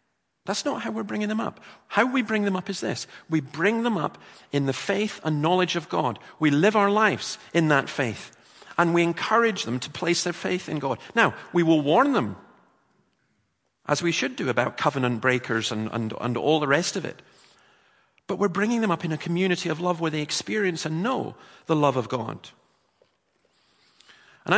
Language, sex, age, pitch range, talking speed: English, male, 40-59, 135-180 Hz, 200 wpm